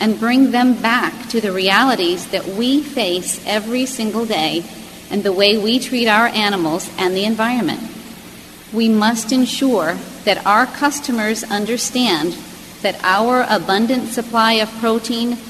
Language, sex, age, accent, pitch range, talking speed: English, female, 40-59, American, 190-240 Hz, 140 wpm